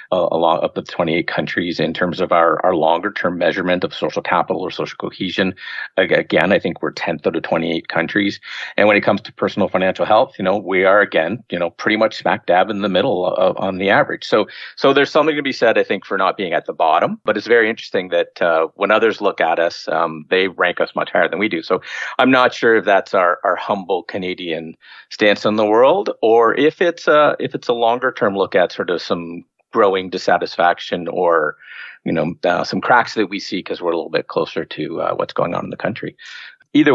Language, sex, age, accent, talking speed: English, male, 50-69, American, 235 wpm